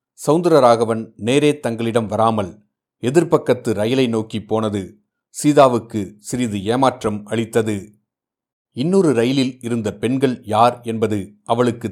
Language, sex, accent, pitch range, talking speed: Tamil, male, native, 110-130 Hz, 100 wpm